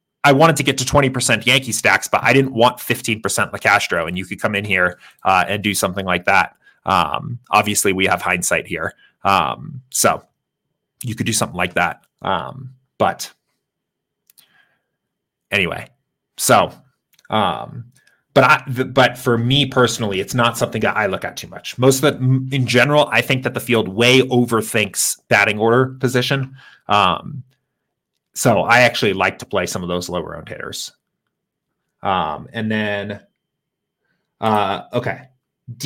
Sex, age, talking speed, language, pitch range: male, 30-49, 155 wpm, English, 110-140 Hz